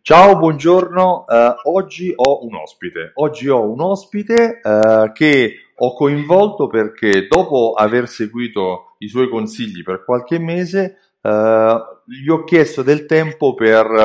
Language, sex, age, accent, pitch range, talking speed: Italian, male, 30-49, native, 105-140 Hz, 135 wpm